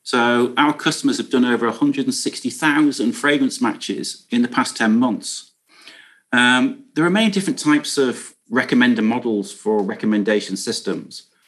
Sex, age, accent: male, 40-59, British